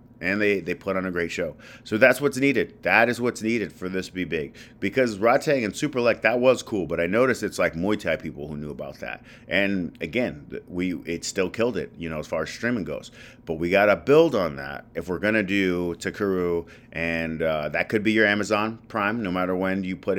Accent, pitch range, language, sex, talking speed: American, 85-110 Hz, English, male, 240 wpm